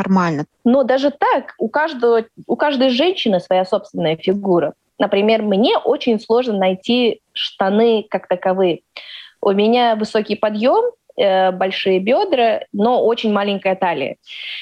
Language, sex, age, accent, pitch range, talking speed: Russian, female, 20-39, native, 190-245 Hz, 120 wpm